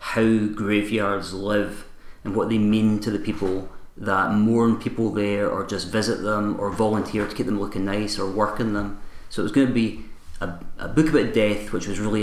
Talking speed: 205 wpm